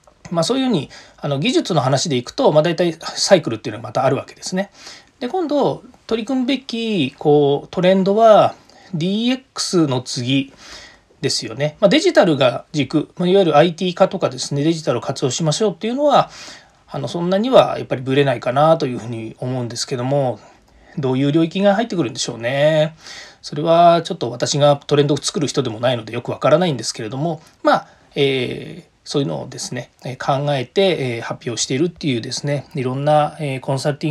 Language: Japanese